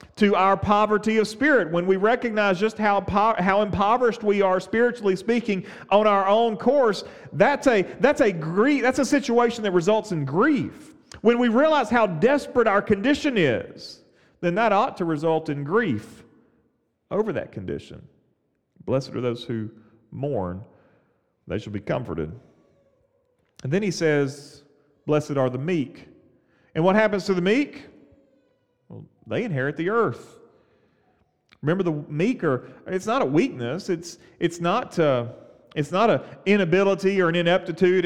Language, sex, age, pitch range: English, male, 40-59, 155-225 Hz